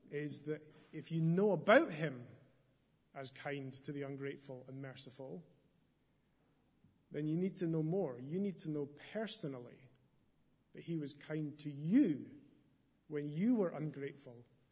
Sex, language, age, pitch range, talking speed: male, English, 30-49, 140-170 Hz, 145 wpm